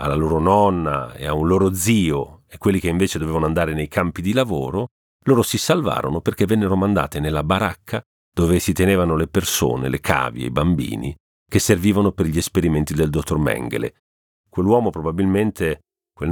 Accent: native